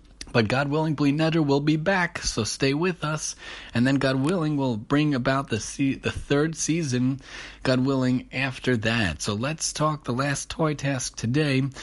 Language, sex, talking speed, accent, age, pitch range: English, male, 185 wpm, American, 30-49, 110-140 Hz